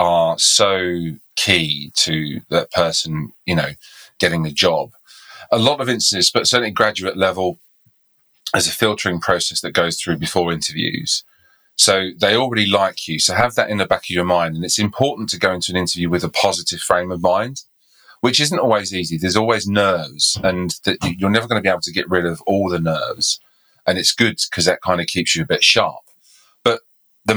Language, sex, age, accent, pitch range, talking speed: English, male, 30-49, British, 85-105 Hz, 200 wpm